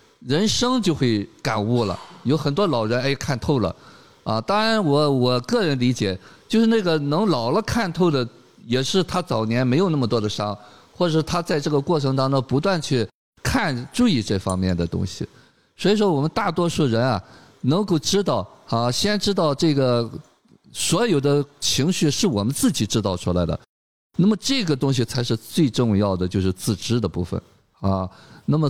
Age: 50-69